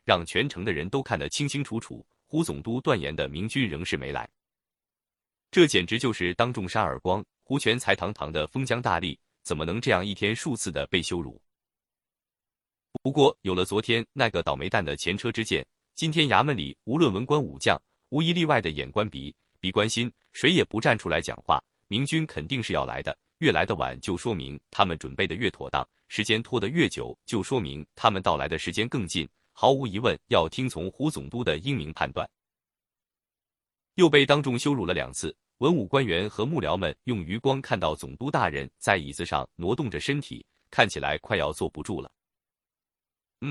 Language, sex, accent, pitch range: Chinese, male, native, 90-135 Hz